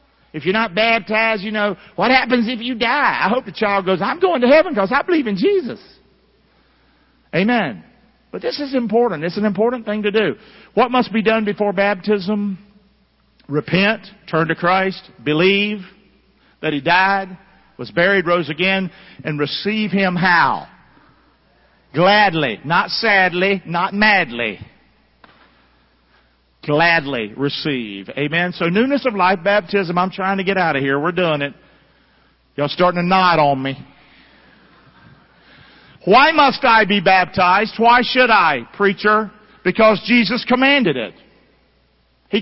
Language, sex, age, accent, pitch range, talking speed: English, male, 50-69, American, 180-225 Hz, 145 wpm